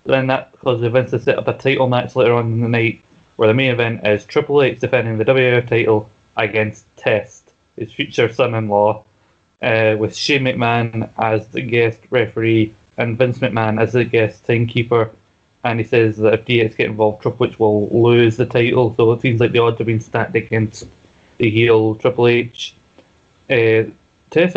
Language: English